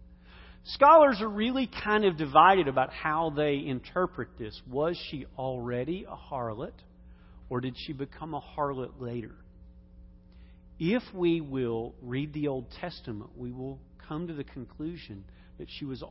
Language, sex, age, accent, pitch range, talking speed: English, male, 40-59, American, 110-160 Hz, 145 wpm